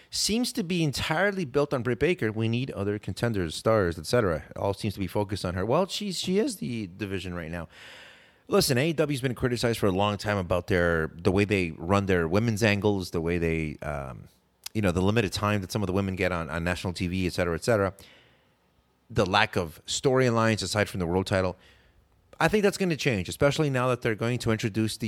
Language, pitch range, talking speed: English, 95-130 Hz, 220 wpm